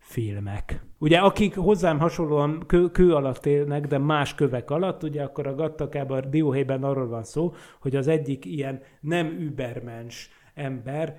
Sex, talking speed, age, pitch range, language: male, 150 wpm, 30-49, 125-155 Hz, Hungarian